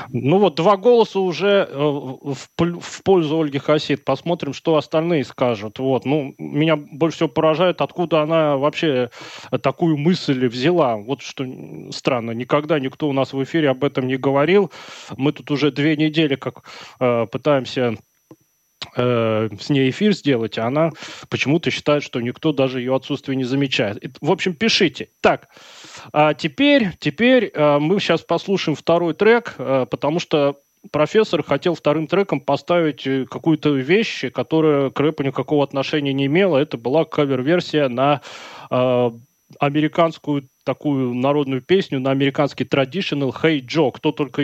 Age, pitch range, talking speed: 20-39, 135-170 Hz, 140 wpm